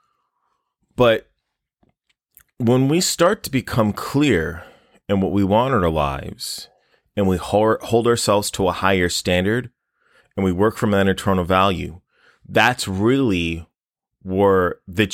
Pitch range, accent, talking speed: 90-110 Hz, American, 130 wpm